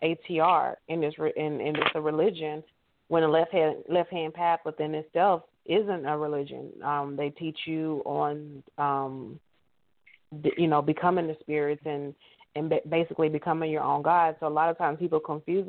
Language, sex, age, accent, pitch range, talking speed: English, female, 20-39, American, 150-170 Hz, 170 wpm